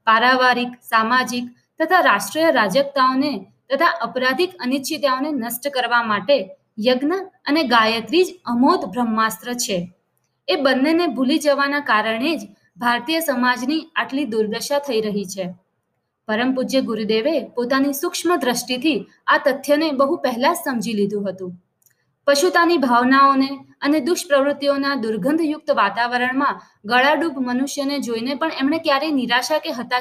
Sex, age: female, 20-39